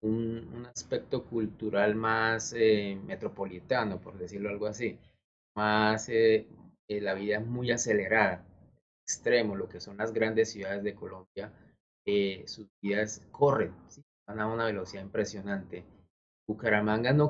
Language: English